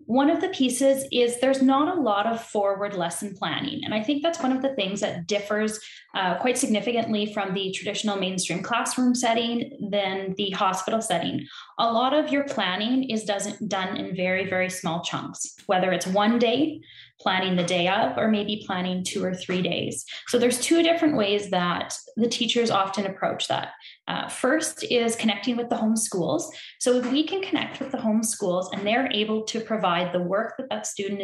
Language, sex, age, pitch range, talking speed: English, female, 10-29, 195-250 Hz, 195 wpm